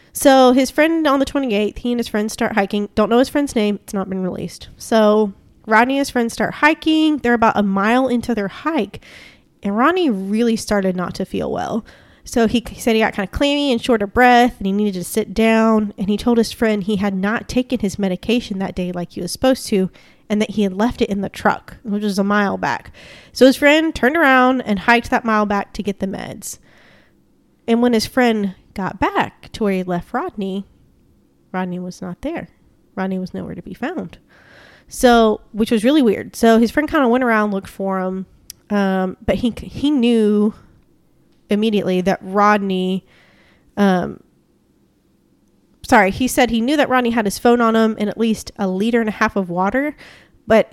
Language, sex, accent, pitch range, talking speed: English, female, American, 200-245 Hz, 205 wpm